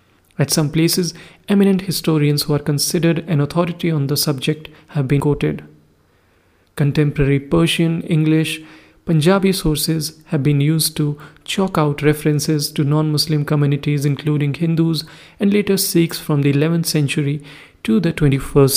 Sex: male